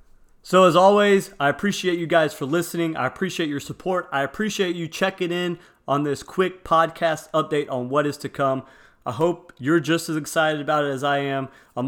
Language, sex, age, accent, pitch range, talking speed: English, male, 30-49, American, 130-165 Hz, 200 wpm